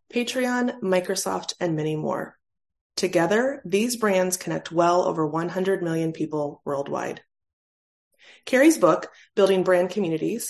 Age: 20-39